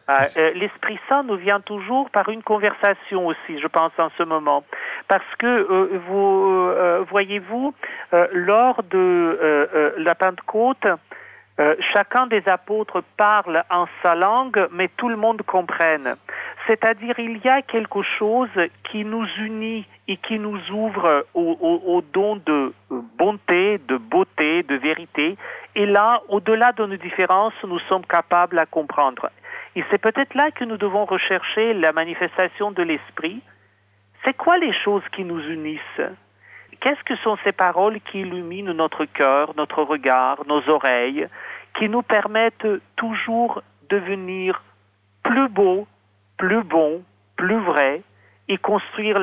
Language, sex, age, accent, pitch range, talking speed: French, male, 50-69, French, 160-215 Hz, 145 wpm